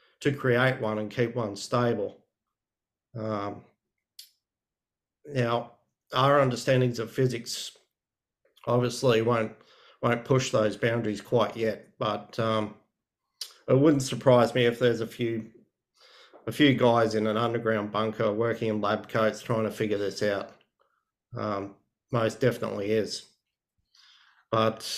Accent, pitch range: Australian, 110-130 Hz